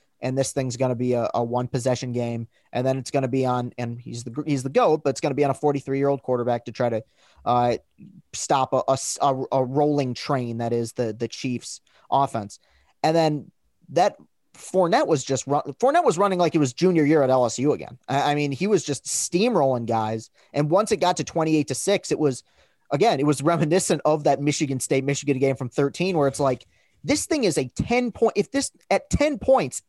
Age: 20-39